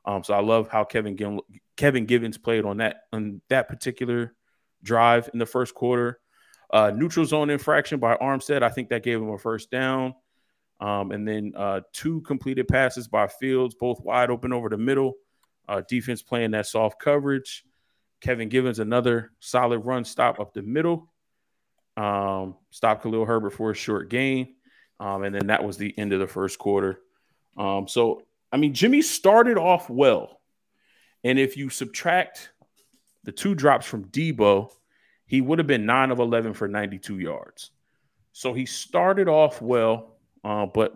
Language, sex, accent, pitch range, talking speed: English, male, American, 100-130 Hz, 170 wpm